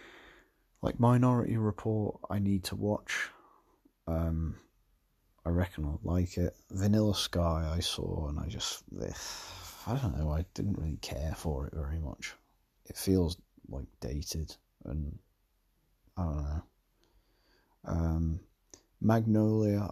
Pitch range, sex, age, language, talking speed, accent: 80-100 Hz, male, 30-49, English, 125 wpm, British